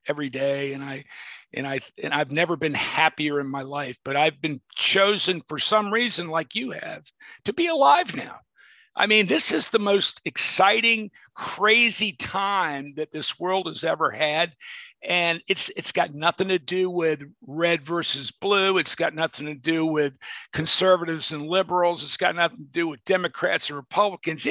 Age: 50-69